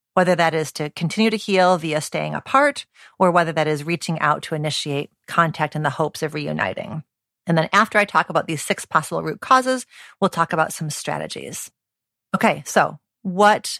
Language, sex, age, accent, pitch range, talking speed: English, female, 40-59, American, 155-210 Hz, 185 wpm